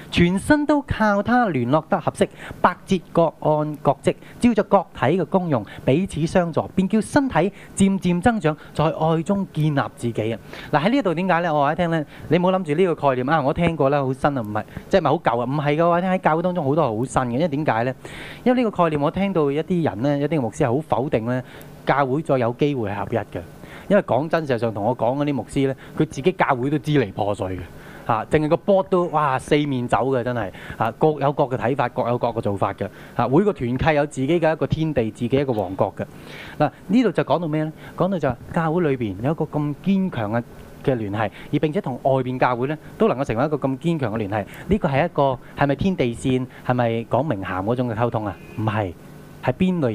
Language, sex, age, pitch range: Chinese, male, 20-39, 125-170 Hz